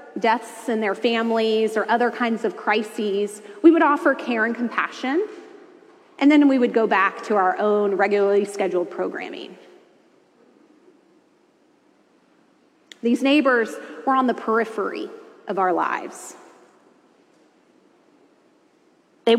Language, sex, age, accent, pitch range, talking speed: English, female, 30-49, American, 220-320 Hz, 115 wpm